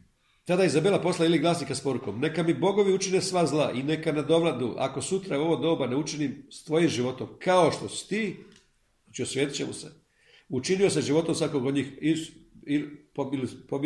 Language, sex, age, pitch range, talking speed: Croatian, male, 50-69, 130-180 Hz, 175 wpm